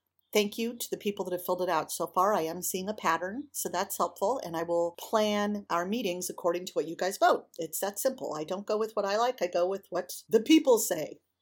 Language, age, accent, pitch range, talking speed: English, 50-69, American, 165-210 Hz, 255 wpm